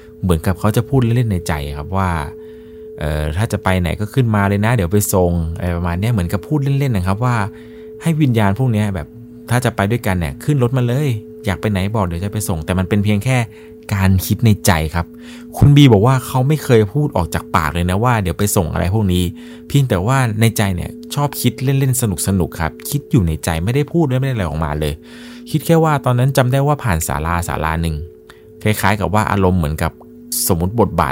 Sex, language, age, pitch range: male, Thai, 20-39, 80-120 Hz